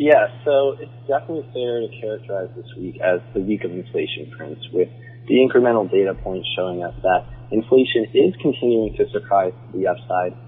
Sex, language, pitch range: male, English, 105-140 Hz